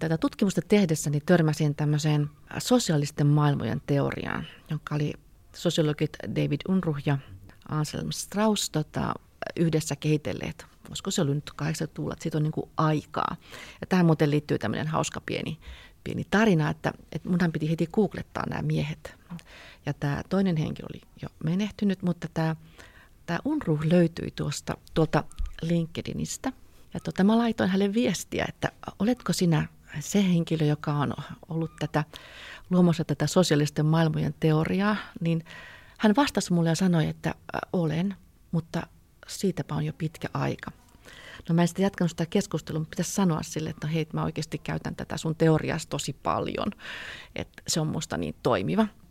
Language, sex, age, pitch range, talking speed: Finnish, female, 40-59, 150-180 Hz, 150 wpm